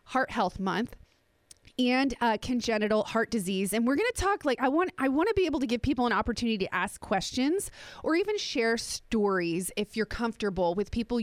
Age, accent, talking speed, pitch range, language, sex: 30-49, American, 205 wpm, 215-285 Hz, English, female